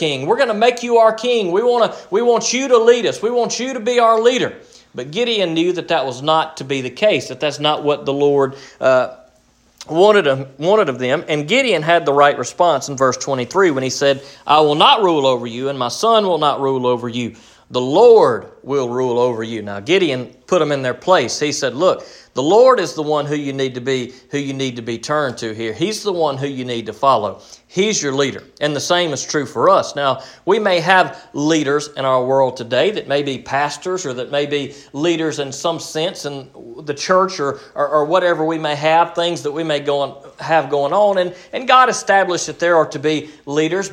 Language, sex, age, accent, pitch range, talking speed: English, male, 40-59, American, 135-185 Hz, 235 wpm